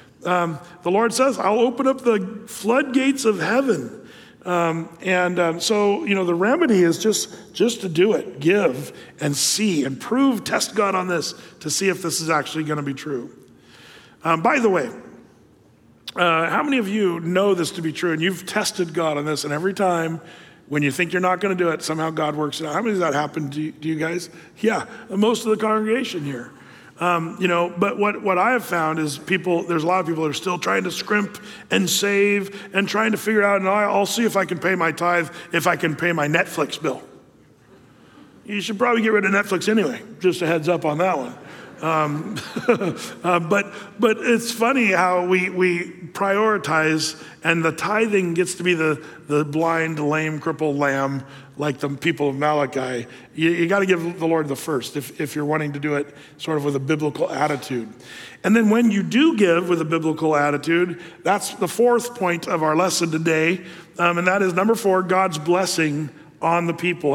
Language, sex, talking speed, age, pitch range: English, male, 205 wpm, 40-59, 155-200 Hz